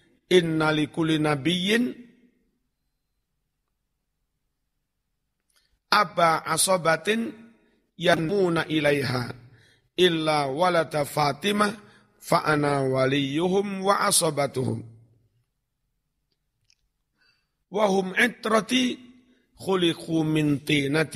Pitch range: 140-185 Hz